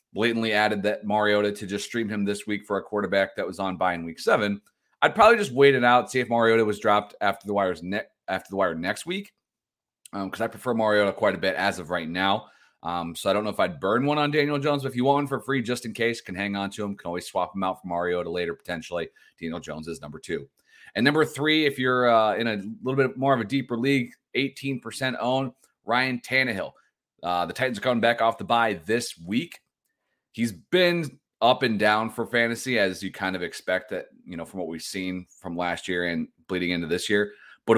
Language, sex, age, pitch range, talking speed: English, male, 30-49, 95-130 Hz, 240 wpm